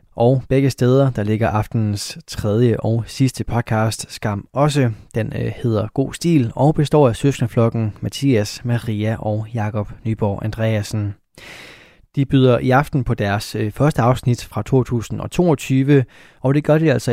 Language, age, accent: Danish, 20-39, native